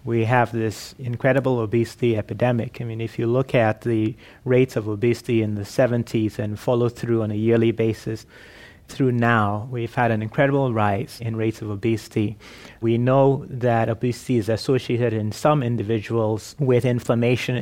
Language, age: English, 30-49